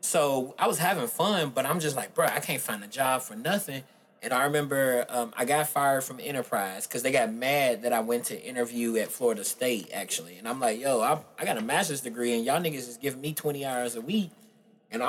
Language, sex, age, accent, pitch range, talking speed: English, male, 20-39, American, 135-185 Hz, 240 wpm